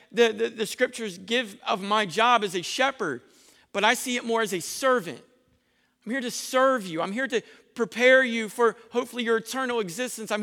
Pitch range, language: 220-260 Hz, English